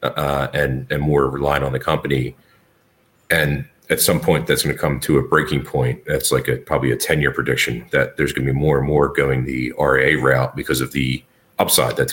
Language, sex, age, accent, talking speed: English, male, 40-59, American, 220 wpm